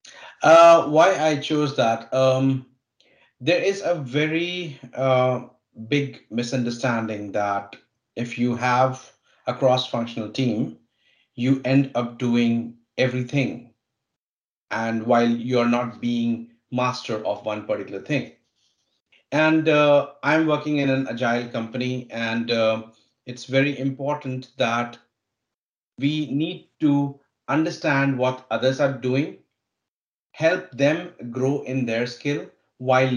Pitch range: 120-145 Hz